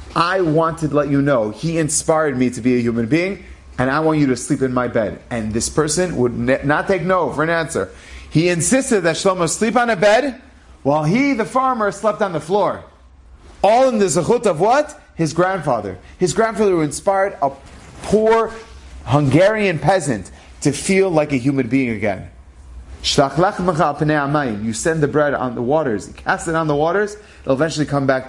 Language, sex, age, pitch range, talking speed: English, male, 30-49, 140-200 Hz, 195 wpm